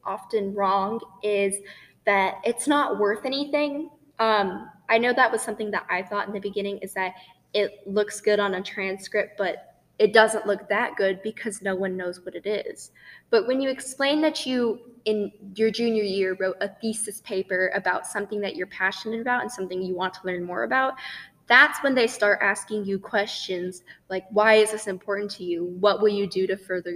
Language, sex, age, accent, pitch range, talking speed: English, female, 10-29, American, 195-240 Hz, 200 wpm